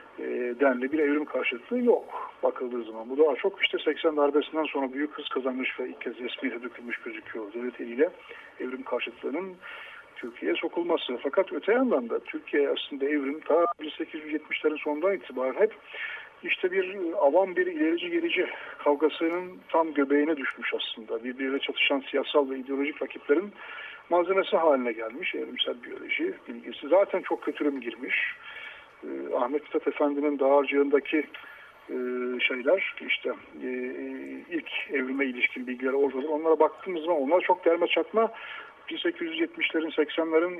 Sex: male